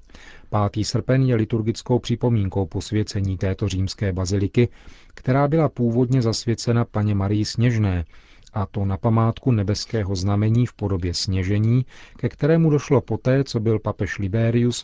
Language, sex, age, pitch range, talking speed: Czech, male, 40-59, 100-120 Hz, 135 wpm